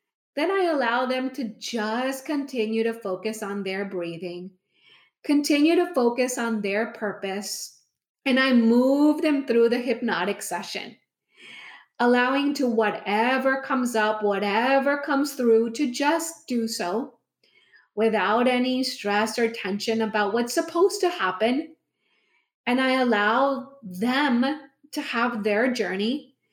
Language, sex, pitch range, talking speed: English, female, 215-275 Hz, 125 wpm